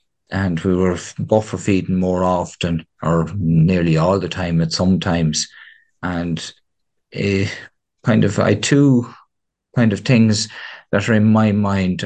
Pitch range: 85-100 Hz